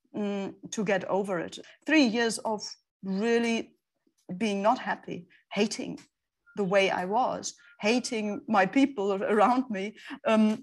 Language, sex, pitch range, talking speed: English, female, 200-260 Hz, 130 wpm